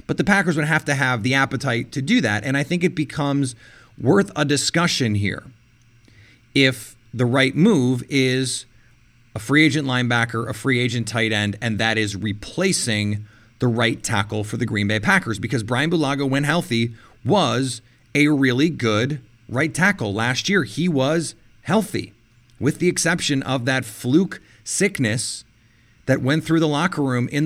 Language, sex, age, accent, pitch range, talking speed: English, male, 30-49, American, 115-150 Hz, 170 wpm